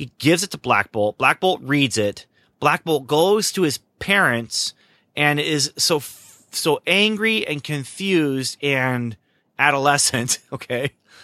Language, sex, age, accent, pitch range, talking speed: English, male, 30-49, American, 105-145 Hz, 140 wpm